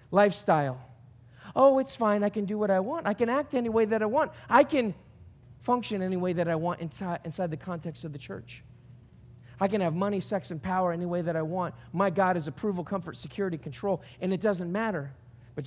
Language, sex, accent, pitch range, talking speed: English, male, American, 150-235 Hz, 215 wpm